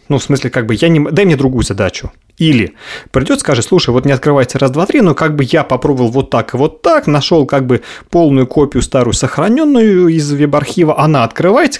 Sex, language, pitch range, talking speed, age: male, Russian, 110-155 Hz, 210 wpm, 30-49